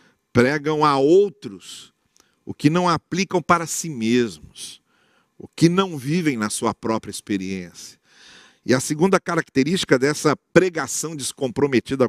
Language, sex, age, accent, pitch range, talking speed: Portuguese, male, 50-69, Brazilian, 125-165 Hz, 125 wpm